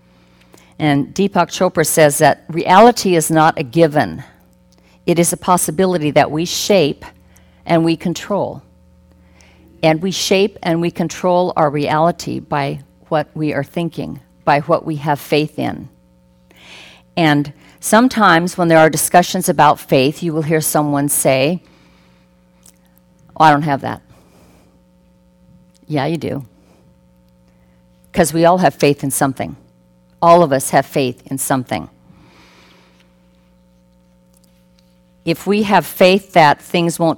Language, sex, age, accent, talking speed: English, female, 50-69, American, 130 wpm